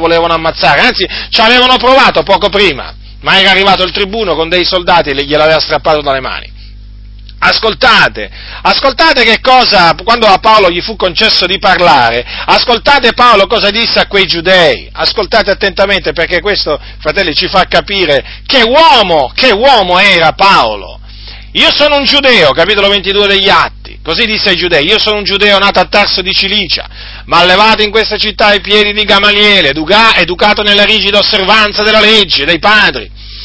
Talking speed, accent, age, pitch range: 165 wpm, native, 40-59, 175-230 Hz